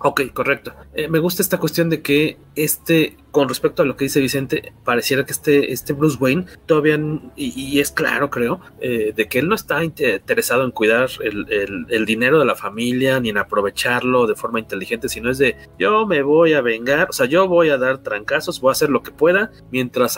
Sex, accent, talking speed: male, Mexican, 220 wpm